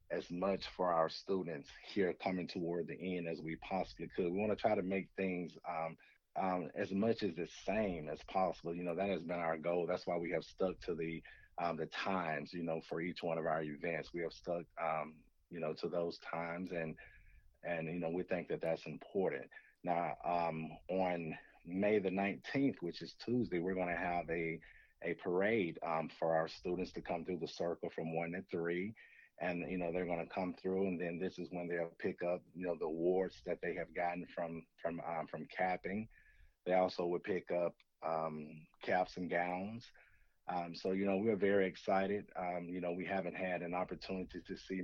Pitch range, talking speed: 85-95 Hz, 205 wpm